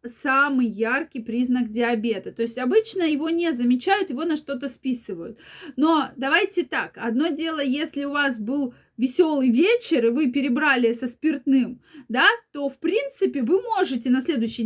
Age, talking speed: 20-39, 155 wpm